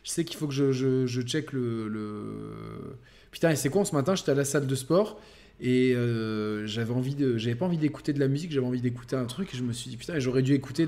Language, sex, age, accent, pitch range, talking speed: French, male, 20-39, French, 120-150 Hz, 270 wpm